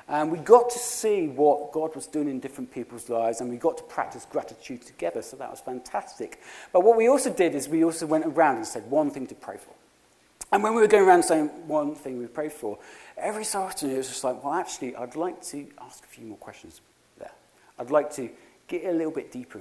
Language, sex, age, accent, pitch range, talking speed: English, male, 40-59, British, 135-215 Hz, 240 wpm